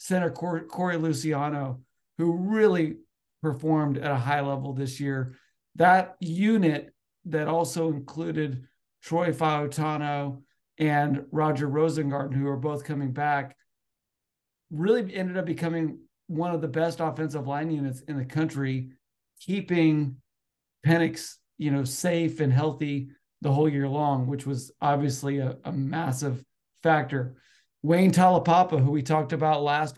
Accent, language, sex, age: American, English, male, 50-69